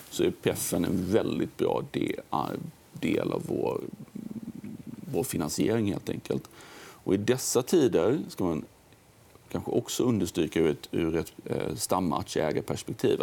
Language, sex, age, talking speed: Swedish, male, 40-59, 115 wpm